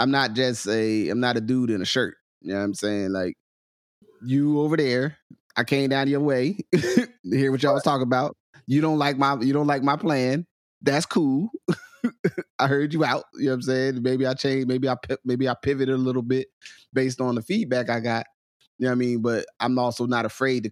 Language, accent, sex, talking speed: English, American, male, 230 wpm